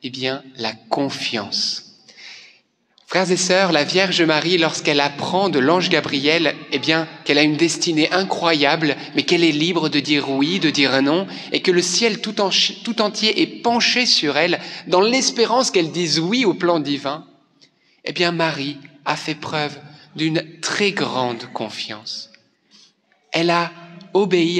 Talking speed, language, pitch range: 160 wpm, French, 140-195 Hz